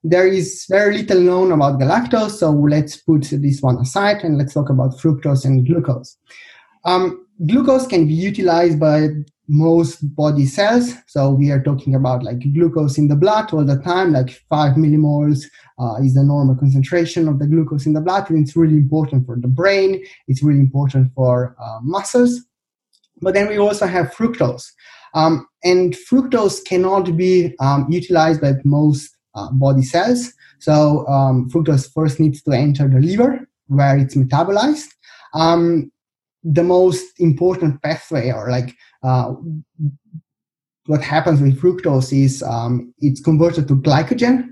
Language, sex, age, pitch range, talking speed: English, male, 20-39, 140-180 Hz, 160 wpm